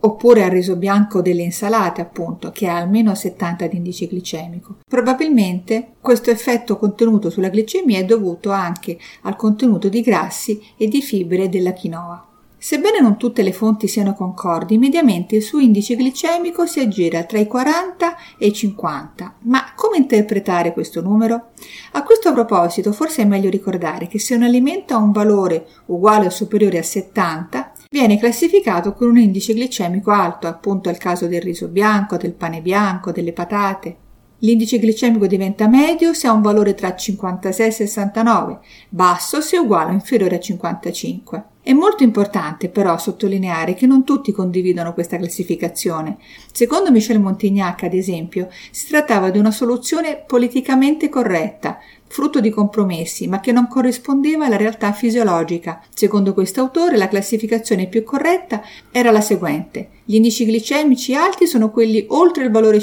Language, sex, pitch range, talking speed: Italian, female, 185-240 Hz, 160 wpm